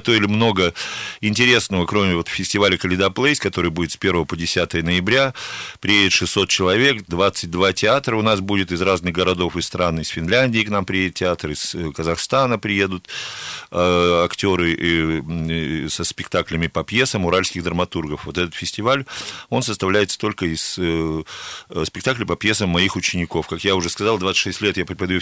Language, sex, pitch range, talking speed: Russian, male, 85-105 Hz, 150 wpm